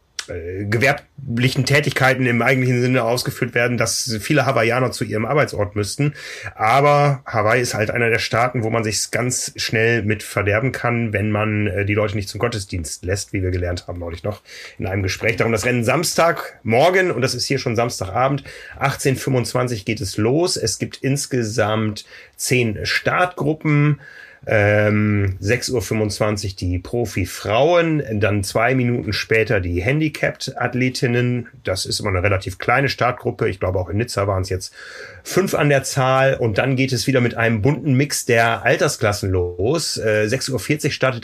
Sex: male